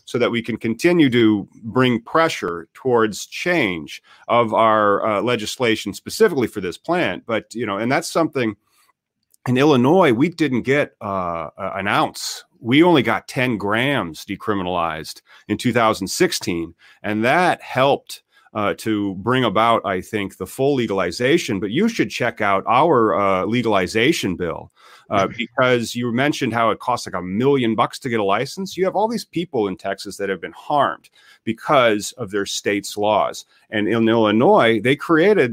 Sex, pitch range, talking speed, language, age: male, 105-130 Hz, 165 wpm, English, 40-59